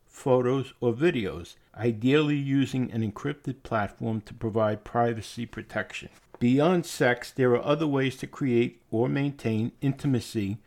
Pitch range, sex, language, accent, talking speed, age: 115-145 Hz, male, English, American, 130 wpm, 60-79